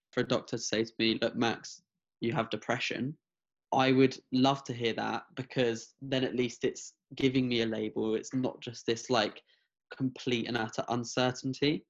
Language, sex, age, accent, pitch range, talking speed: English, male, 10-29, British, 115-135 Hz, 180 wpm